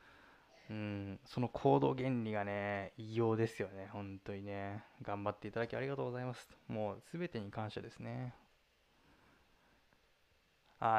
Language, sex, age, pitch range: Japanese, male, 20-39, 100-130 Hz